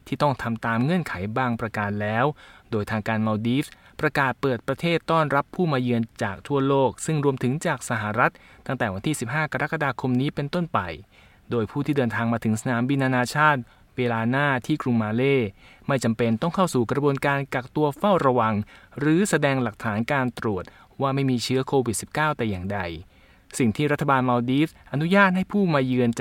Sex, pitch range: male, 115-150 Hz